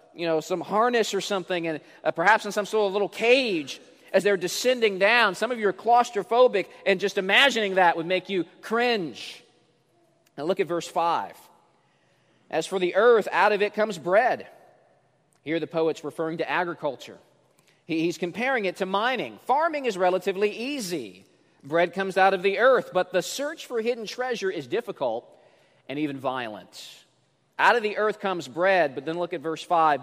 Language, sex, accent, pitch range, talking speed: English, male, American, 160-200 Hz, 180 wpm